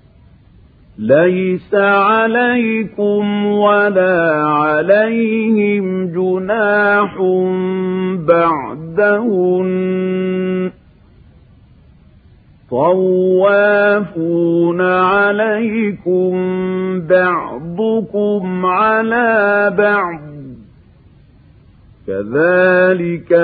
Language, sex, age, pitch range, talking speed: Arabic, male, 50-69, 170-205 Hz, 30 wpm